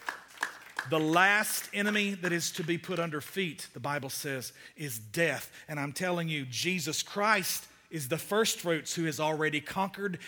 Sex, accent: male, American